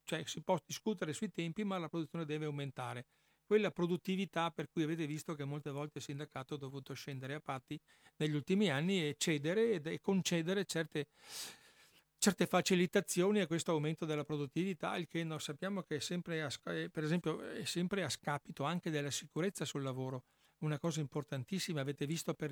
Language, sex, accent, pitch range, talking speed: Italian, male, native, 145-175 Hz, 180 wpm